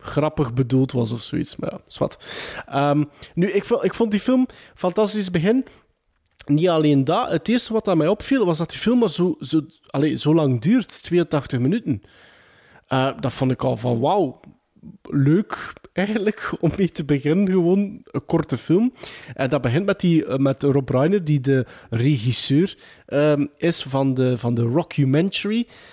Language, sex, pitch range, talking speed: Dutch, male, 135-180 Hz, 155 wpm